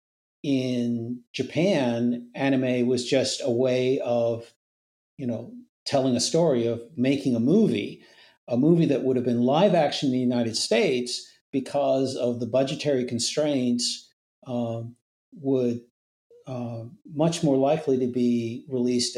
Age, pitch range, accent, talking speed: 50-69, 115-130 Hz, American, 135 wpm